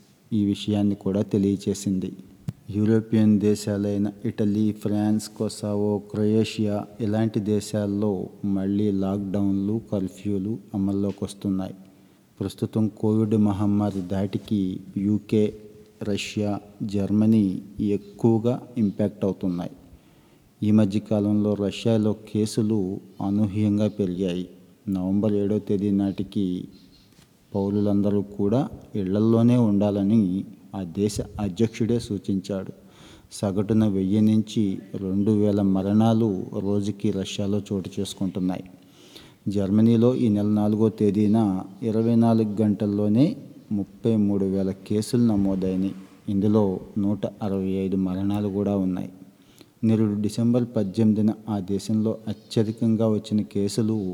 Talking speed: 90 wpm